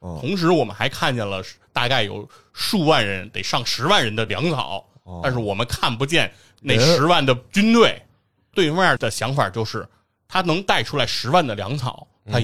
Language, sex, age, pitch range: Chinese, male, 30-49, 110-160 Hz